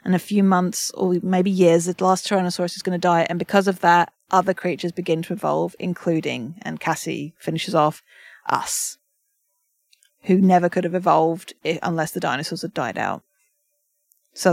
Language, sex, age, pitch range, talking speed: English, female, 30-49, 175-210 Hz, 170 wpm